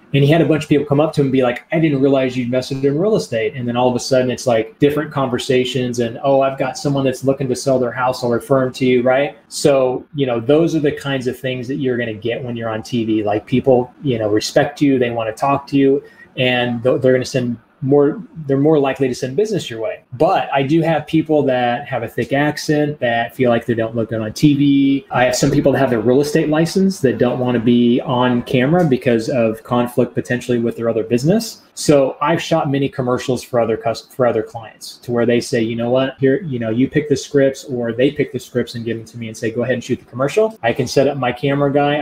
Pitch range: 120-145 Hz